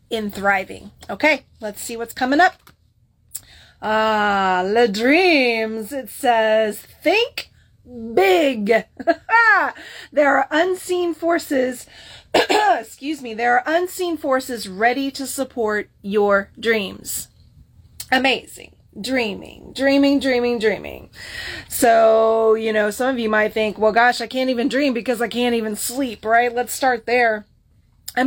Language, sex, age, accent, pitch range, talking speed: English, female, 30-49, American, 205-250 Hz, 125 wpm